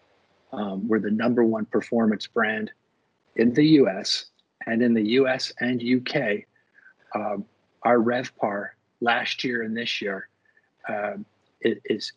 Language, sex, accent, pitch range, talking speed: English, male, American, 110-140 Hz, 140 wpm